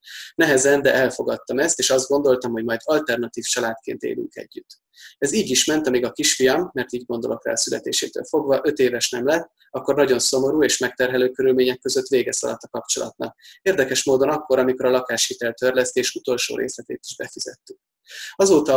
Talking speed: 165 wpm